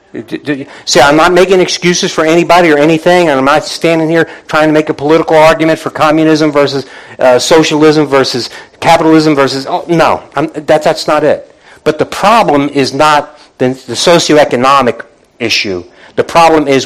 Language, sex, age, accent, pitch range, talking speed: English, male, 50-69, American, 150-185 Hz, 160 wpm